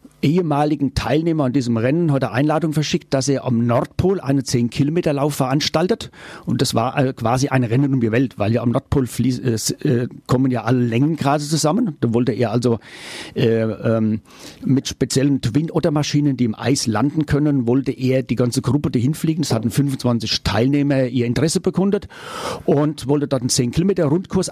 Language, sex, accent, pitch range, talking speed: German, male, German, 125-150 Hz, 175 wpm